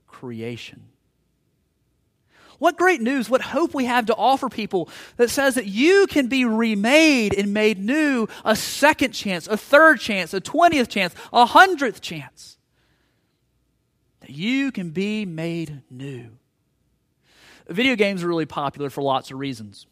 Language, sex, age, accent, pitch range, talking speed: English, male, 30-49, American, 130-210 Hz, 145 wpm